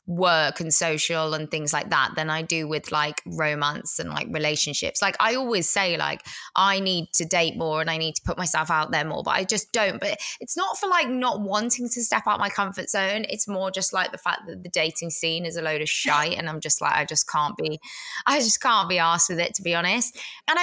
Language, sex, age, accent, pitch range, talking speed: English, female, 20-39, British, 155-205 Hz, 250 wpm